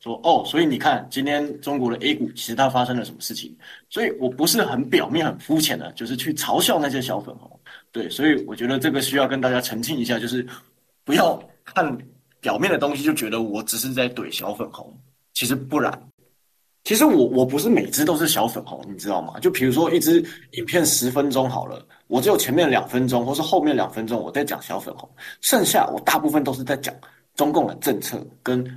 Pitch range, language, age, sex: 120-155 Hz, Chinese, 20-39, male